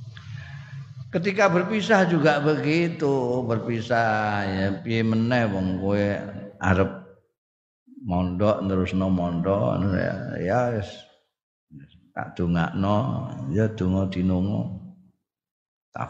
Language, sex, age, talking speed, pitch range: Indonesian, male, 50-69, 80 wpm, 95-145 Hz